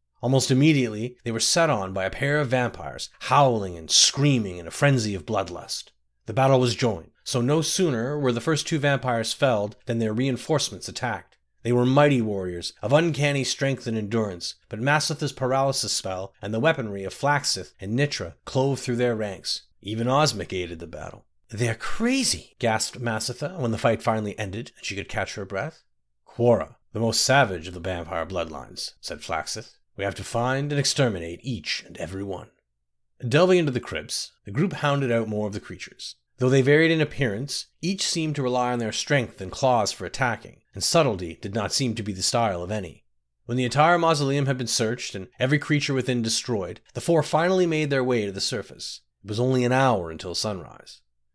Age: 30-49